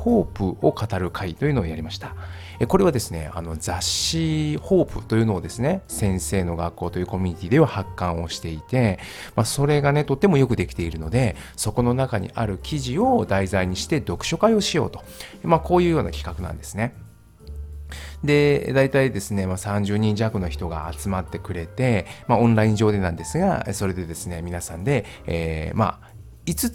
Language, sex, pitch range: Japanese, male, 85-120 Hz